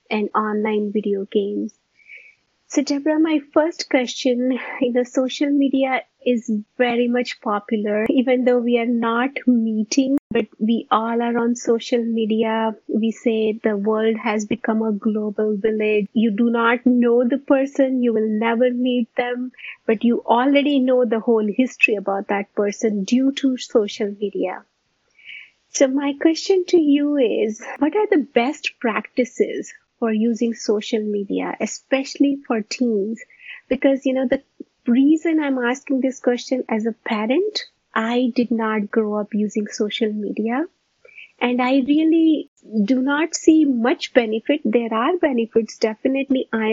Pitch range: 220-275 Hz